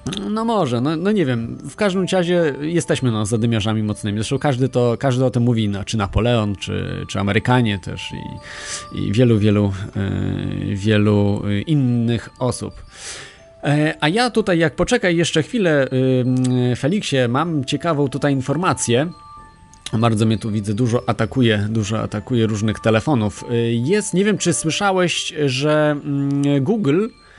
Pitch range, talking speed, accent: 115-155 Hz, 130 wpm, native